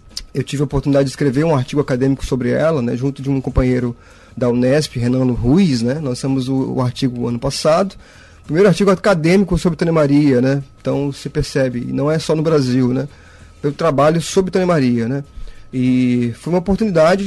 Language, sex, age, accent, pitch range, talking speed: Portuguese, male, 20-39, Brazilian, 135-180 Hz, 190 wpm